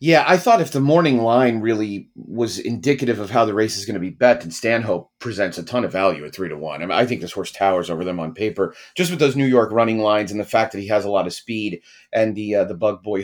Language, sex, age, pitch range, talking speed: English, male, 30-49, 100-125 Hz, 290 wpm